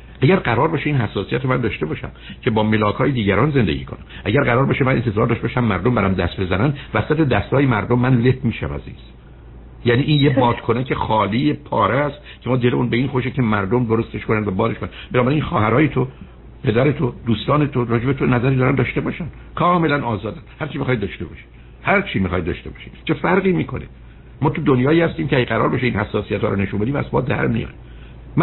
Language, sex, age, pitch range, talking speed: Persian, male, 60-79, 100-140 Hz, 205 wpm